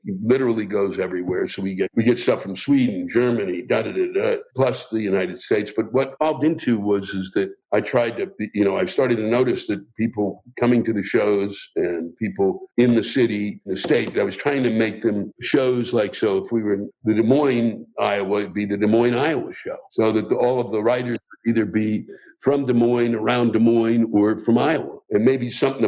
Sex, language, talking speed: male, English, 225 wpm